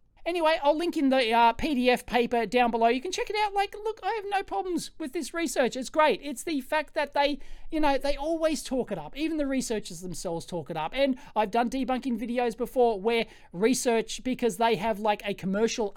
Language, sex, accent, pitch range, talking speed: English, male, Australian, 215-300 Hz, 220 wpm